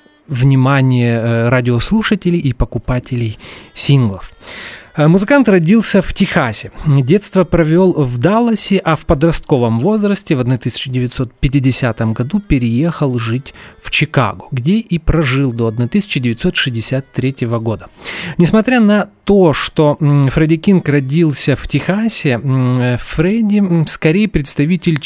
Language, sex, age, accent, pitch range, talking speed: Russian, male, 30-49, native, 125-170 Hz, 100 wpm